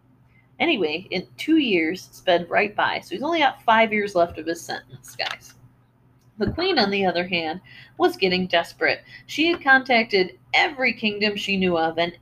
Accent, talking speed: American, 175 wpm